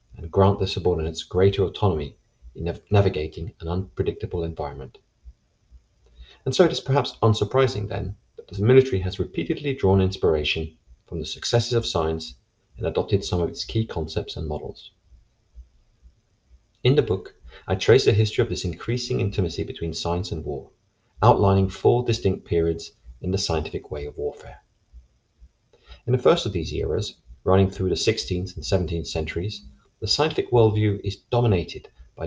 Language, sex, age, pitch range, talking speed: English, male, 30-49, 80-110 Hz, 155 wpm